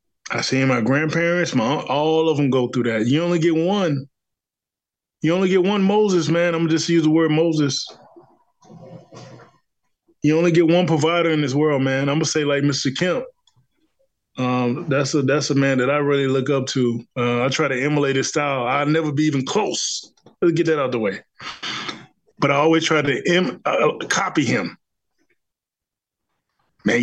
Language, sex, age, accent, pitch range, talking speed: English, male, 20-39, American, 135-165 Hz, 185 wpm